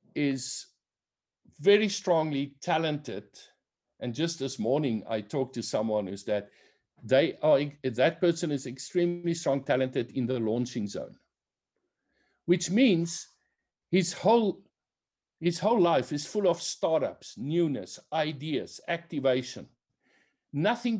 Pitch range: 125-170 Hz